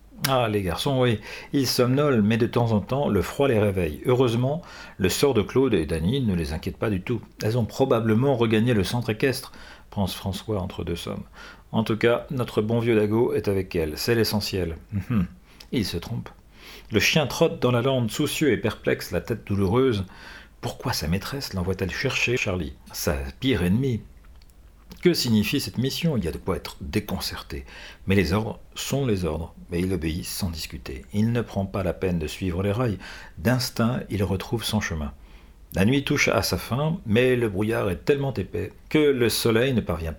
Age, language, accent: 50-69, French, French